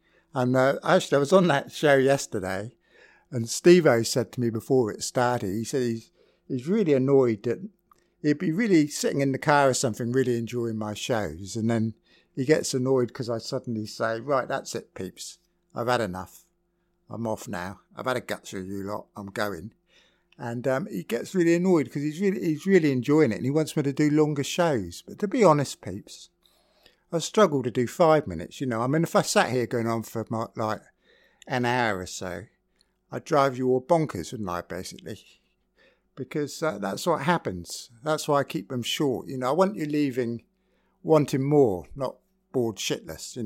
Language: English